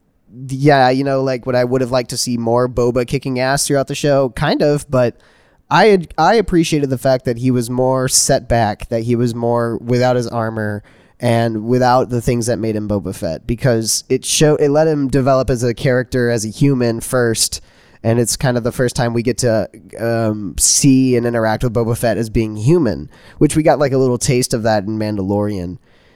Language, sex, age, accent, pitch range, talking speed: English, male, 10-29, American, 110-135 Hz, 215 wpm